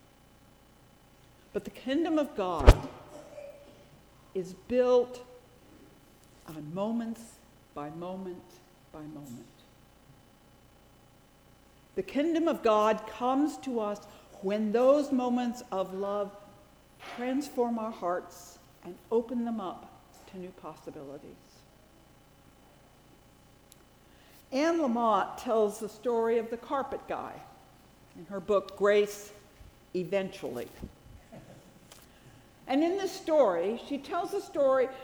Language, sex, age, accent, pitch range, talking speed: English, female, 60-79, American, 205-265 Hz, 100 wpm